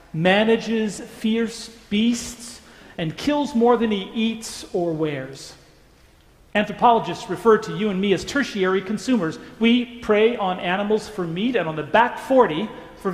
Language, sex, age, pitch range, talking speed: English, male, 40-59, 185-235 Hz, 145 wpm